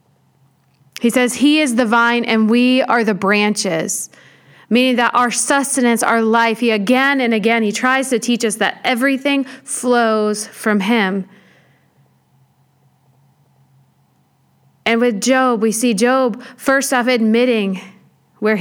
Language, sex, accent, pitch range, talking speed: English, female, American, 220-275 Hz, 130 wpm